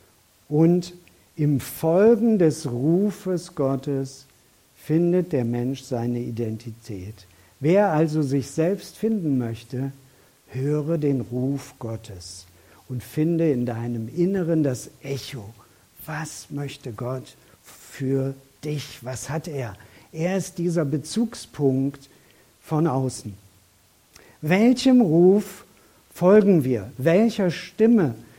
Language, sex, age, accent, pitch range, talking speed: German, male, 50-69, German, 120-165 Hz, 100 wpm